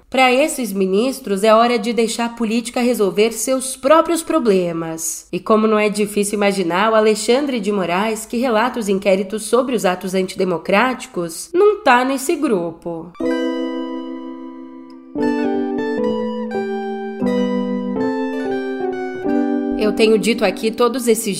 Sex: female